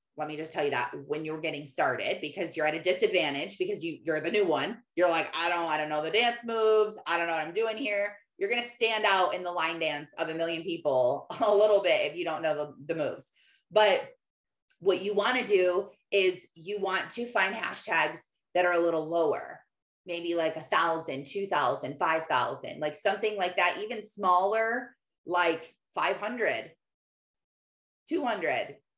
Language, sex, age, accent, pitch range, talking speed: English, female, 20-39, American, 165-220 Hz, 195 wpm